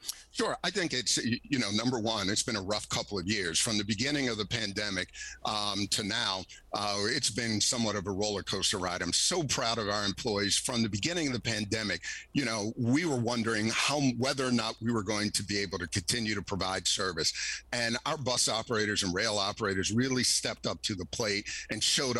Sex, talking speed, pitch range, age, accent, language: male, 215 wpm, 105-130 Hz, 50-69, American, English